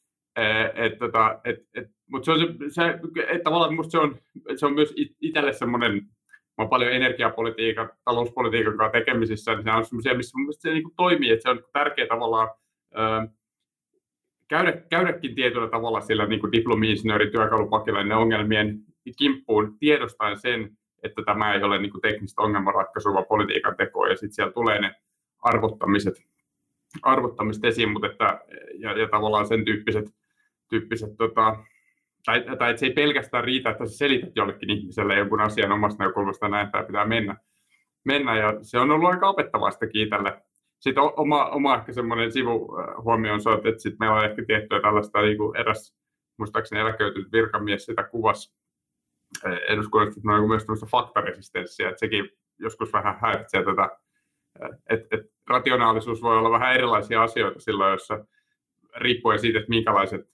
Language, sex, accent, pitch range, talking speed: Finnish, male, native, 105-125 Hz, 140 wpm